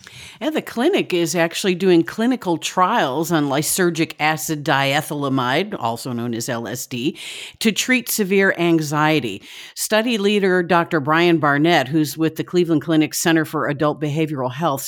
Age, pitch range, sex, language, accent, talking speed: 50-69, 155-195 Hz, female, English, American, 140 wpm